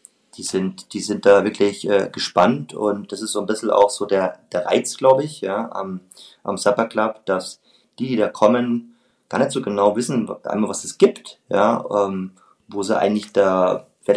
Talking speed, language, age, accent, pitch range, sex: 200 wpm, German, 30-49, German, 100-125 Hz, male